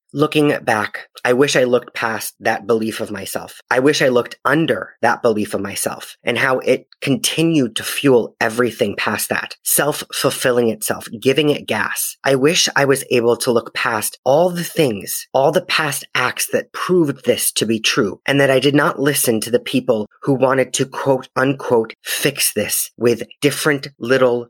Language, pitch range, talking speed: English, 115-140 Hz, 180 wpm